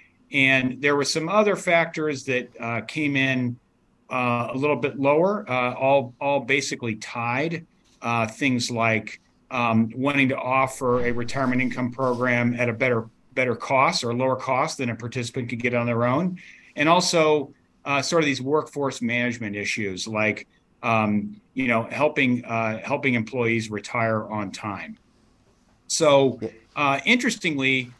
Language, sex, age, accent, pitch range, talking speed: English, male, 40-59, American, 110-135 Hz, 150 wpm